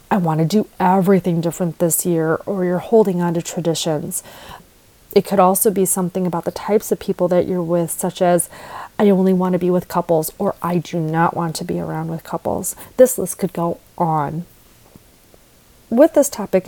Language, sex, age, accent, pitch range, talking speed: English, female, 30-49, American, 175-210 Hz, 195 wpm